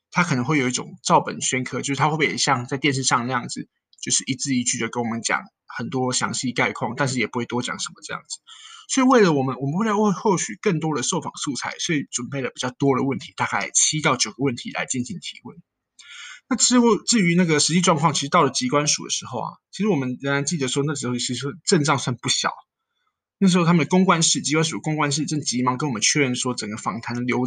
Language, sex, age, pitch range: Chinese, male, 20-39, 130-190 Hz